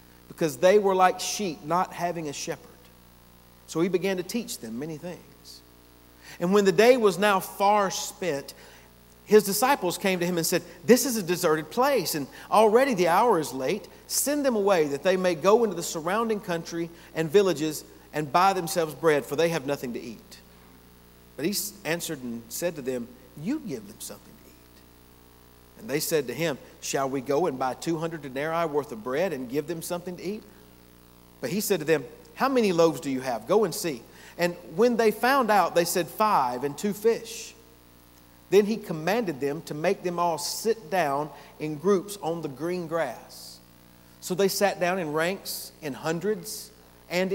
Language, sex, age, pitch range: English, male, 50-69, 125-195 Hz